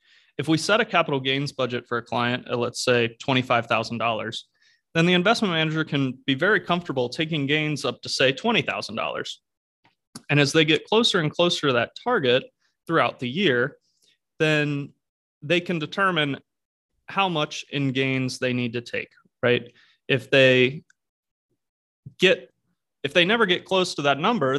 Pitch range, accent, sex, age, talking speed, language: 125-160 Hz, American, male, 30-49, 160 wpm, English